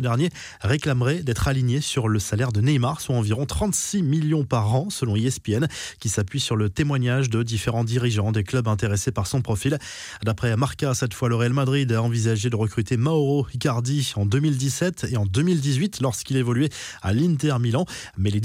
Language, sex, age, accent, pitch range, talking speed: French, male, 20-39, French, 115-145 Hz, 180 wpm